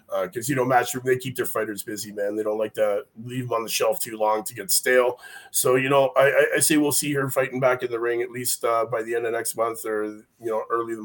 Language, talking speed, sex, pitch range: English, 295 wpm, male, 115-140 Hz